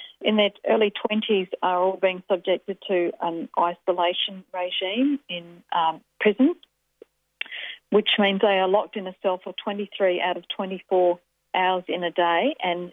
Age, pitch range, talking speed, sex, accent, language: 40-59, 170-195 Hz, 155 wpm, female, Australian, English